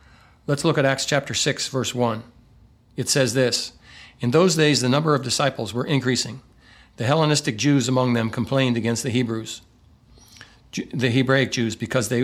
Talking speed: 160 wpm